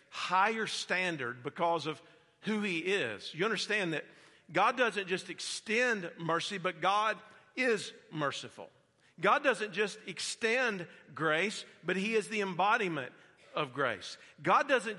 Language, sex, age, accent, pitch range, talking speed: English, male, 50-69, American, 185-240 Hz, 130 wpm